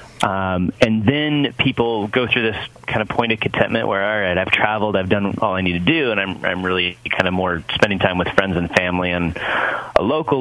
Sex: male